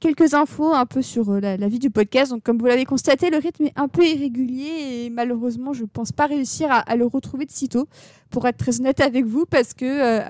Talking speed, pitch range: 250 wpm, 225-265 Hz